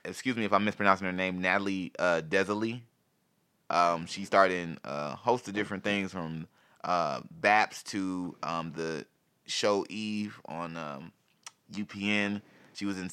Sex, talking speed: male, 150 wpm